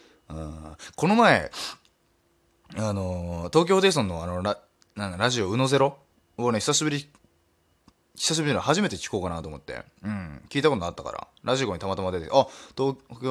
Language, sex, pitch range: Japanese, male, 90-150 Hz